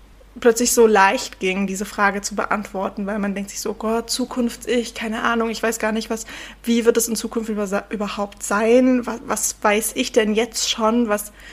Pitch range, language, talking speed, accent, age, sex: 205-235 Hz, German, 200 wpm, German, 20-39, female